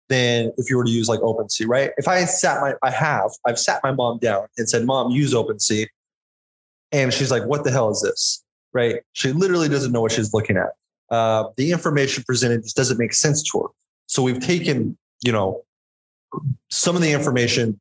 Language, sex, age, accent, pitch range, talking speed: English, male, 20-39, American, 110-145 Hz, 205 wpm